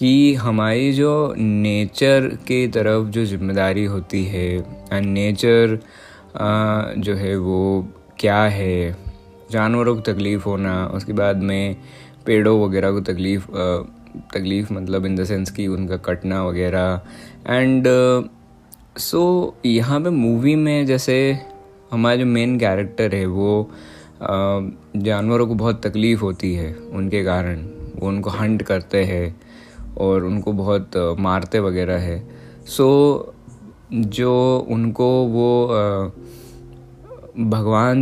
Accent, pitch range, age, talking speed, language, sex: native, 95-120 Hz, 20-39, 120 wpm, Hindi, male